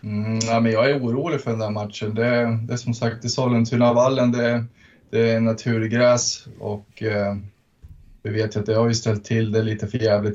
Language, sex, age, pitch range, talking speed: Swedish, male, 20-39, 105-120 Hz, 215 wpm